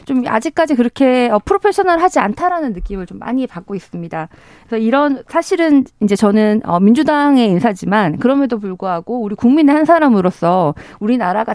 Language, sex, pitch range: Korean, female, 195-275 Hz